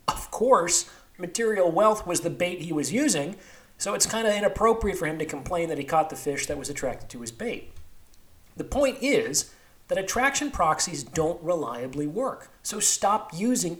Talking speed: 185 wpm